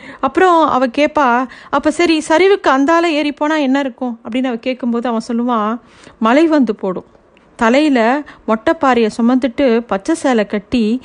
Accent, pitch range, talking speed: native, 225-285 Hz, 135 wpm